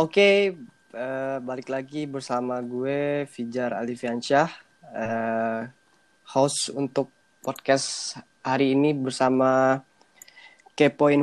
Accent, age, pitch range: native, 20-39, 120-145 Hz